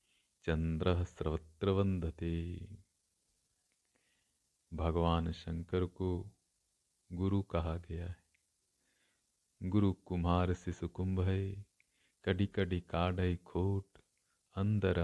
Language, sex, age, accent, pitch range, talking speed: Hindi, male, 50-69, native, 85-95 Hz, 75 wpm